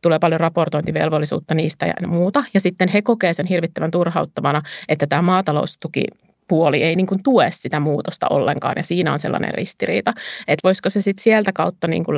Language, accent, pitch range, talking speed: Finnish, native, 165-205 Hz, 175 wpm